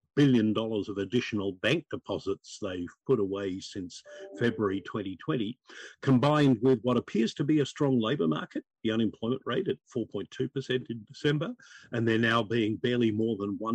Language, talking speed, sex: English, 155 wpm, male